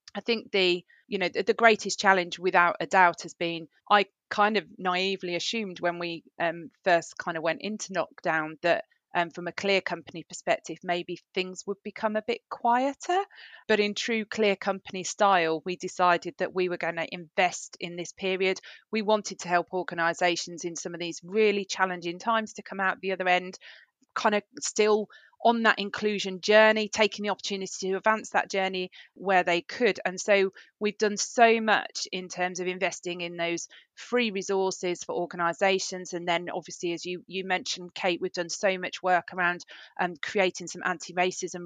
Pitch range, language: 175-205 Hz, English